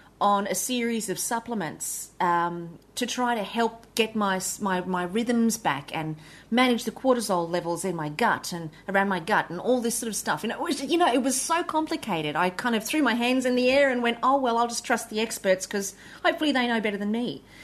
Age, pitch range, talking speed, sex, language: 30-49, 200-270 Hz, 230 wpm, female, English